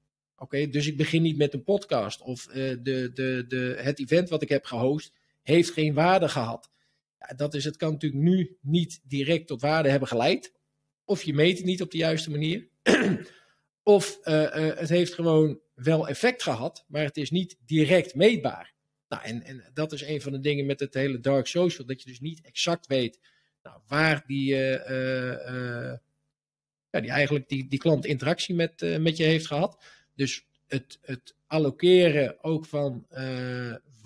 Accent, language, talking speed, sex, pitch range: Dutch, Dutch, 185 wpm, male, 135-160 Hz